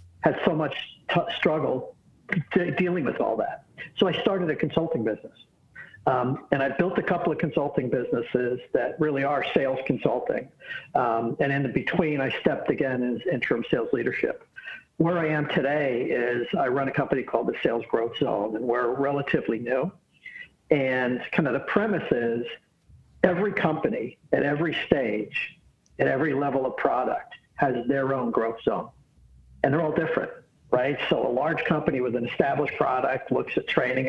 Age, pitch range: 60-79, 125-165 Hz